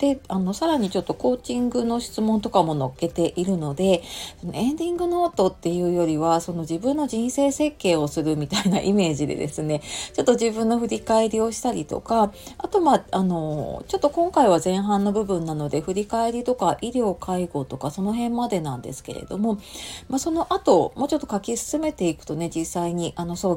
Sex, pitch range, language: female, 165-240 Hz, Japanese